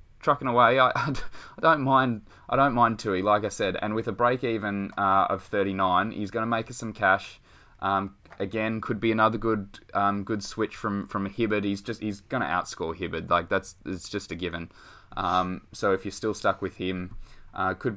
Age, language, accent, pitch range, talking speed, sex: 20-39, English, Australian, 95-110 Hz, 205 wpm, male